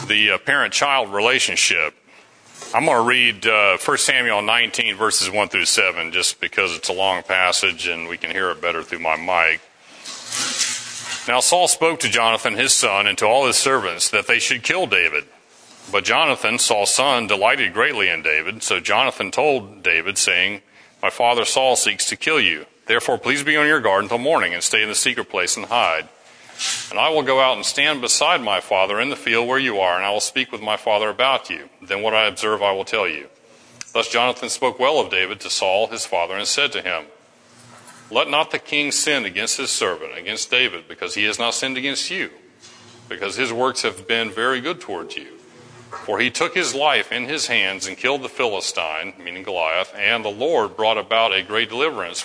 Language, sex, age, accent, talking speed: English, male, 40-59, American, 205 wpm